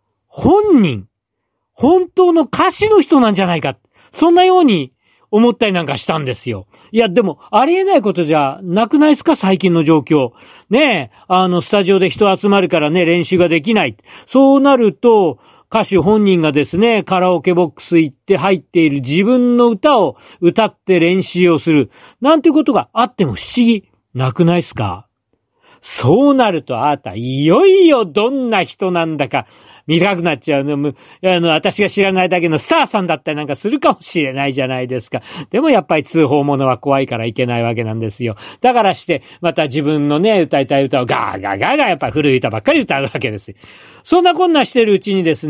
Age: 40-59